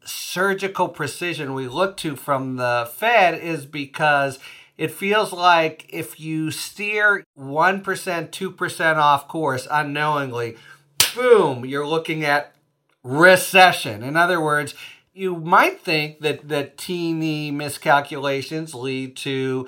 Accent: American